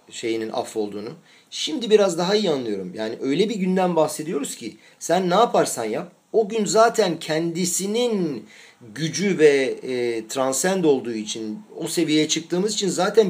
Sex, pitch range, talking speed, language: male, 155-215 Hz, 150 wpm, Turkish